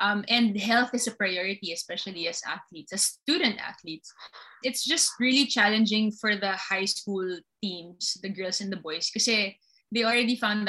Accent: Filipino